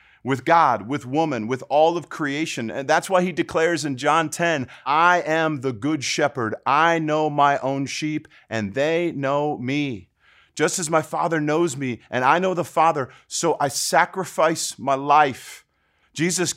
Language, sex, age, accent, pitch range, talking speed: English, male, 40-59, American, 120-165 Hz, 170 wpm